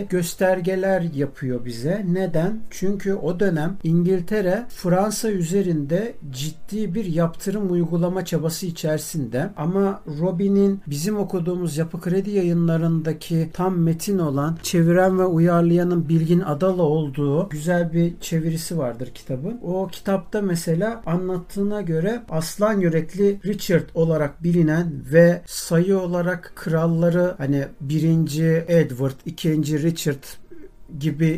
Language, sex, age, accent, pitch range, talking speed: Turkish, male, 60-79, native, 155-190 Hz, 110 wpm